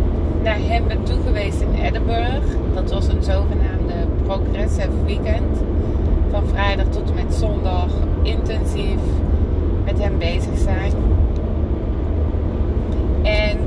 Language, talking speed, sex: Dutch, 105 wpm, female